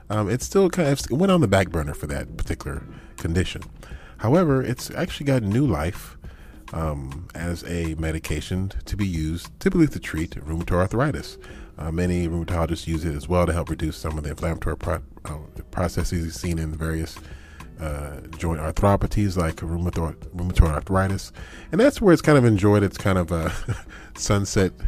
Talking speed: 170 wpm